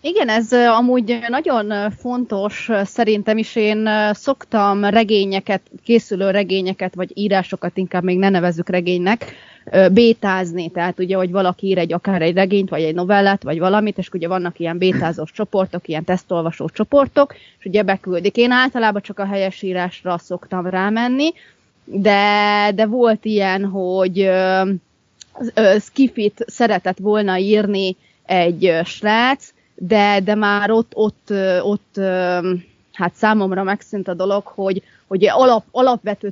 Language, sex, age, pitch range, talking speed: Hungarian, female, 20-39, 185-215 Hz, 130 wpm